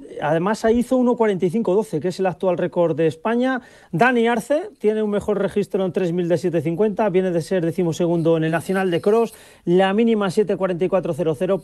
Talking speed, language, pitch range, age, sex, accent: 170 wpm, Spanish, 170-215 Hz, 40-59, male, Spanish